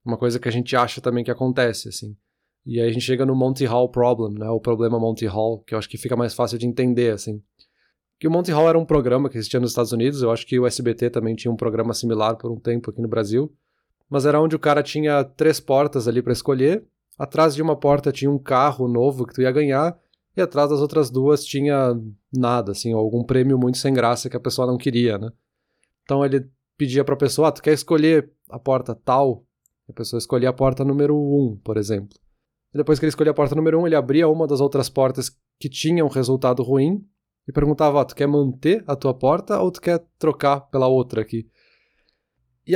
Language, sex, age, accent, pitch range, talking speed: Portuguese, male, 20-39, Brazilian, 120-150 Hz, 230 wpm